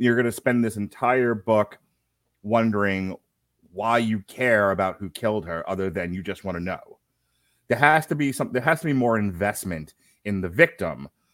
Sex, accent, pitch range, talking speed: male, American, 105-140 Hz, 190 wpm